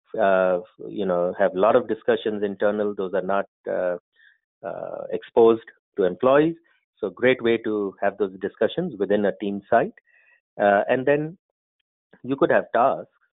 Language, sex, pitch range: English, male, 100-140 Hz